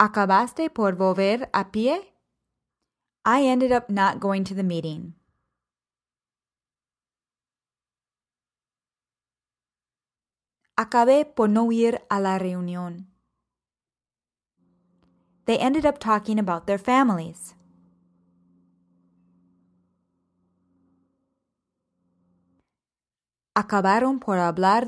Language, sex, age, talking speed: English, female, 20-39, 70 wpm